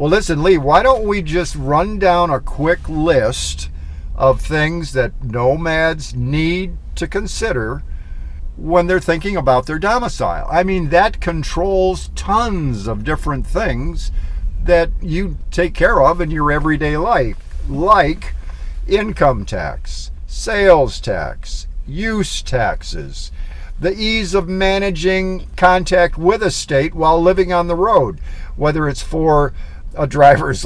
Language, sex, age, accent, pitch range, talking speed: English, male, 50-69, American, 110-175 Hz, 130 wpm